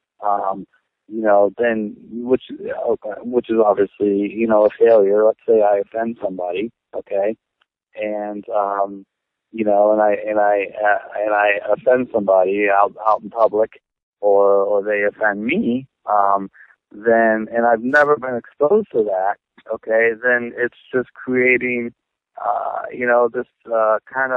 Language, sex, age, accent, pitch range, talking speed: English, male, 30-49, American, 105-125 Hz, 150 wpm